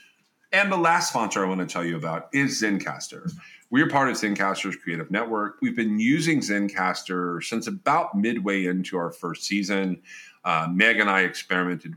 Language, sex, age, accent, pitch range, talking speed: English, male, 40-59, American, 85-115 Hz, 175 wpm